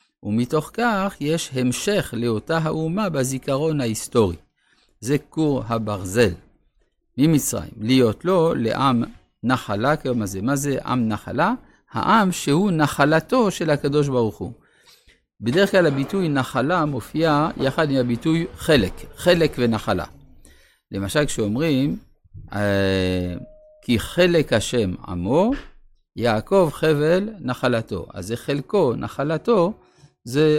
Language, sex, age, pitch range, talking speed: Hebrew, male, 50-69, 110-160 Hz, 105 wpm